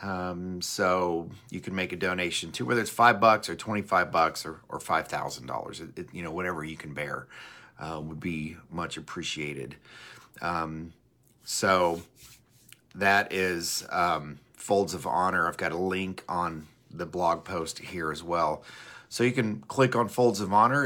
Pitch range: 90-115 Hz